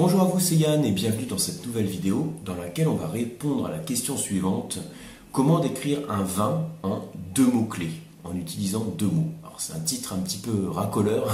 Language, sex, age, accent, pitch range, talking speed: French, male, 30-49, French, 95-135 Hz, 210 wpm